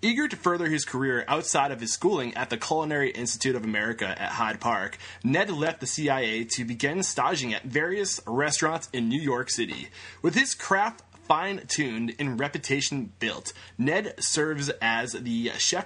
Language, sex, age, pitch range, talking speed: English, male, 20-39, 120-160 Hz, 165 wpm